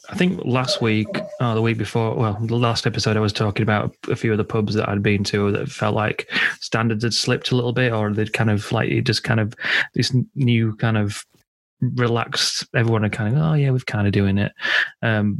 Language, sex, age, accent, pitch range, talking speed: English, male, 30-49, British, 105-120 Hz, 235 wpm